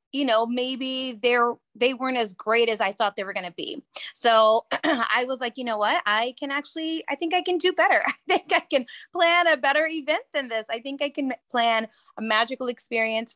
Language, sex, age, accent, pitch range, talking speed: English, female, 20-39, American, 205-260 Hz, 225 wpm